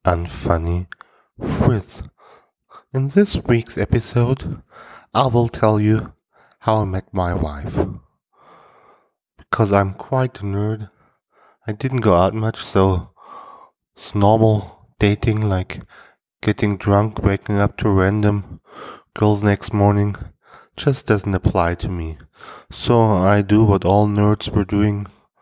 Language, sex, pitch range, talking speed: English, male, 95-110 Hz, 125 wpm